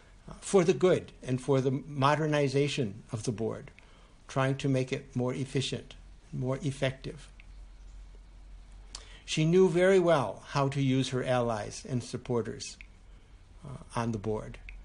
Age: 60-79